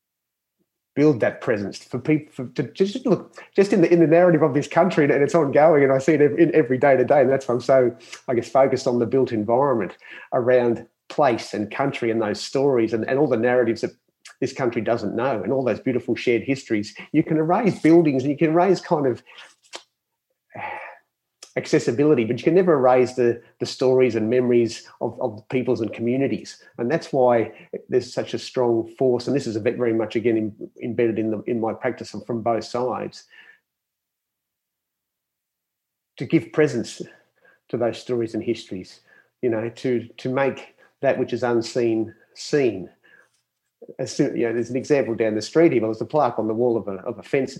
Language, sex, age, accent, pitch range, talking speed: English, male, 30-49, Australian, 115-150 Hz, 200 wpm